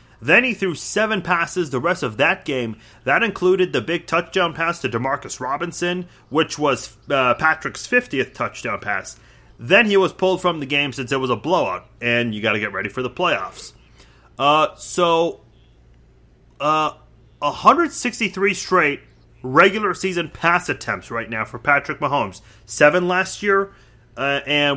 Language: English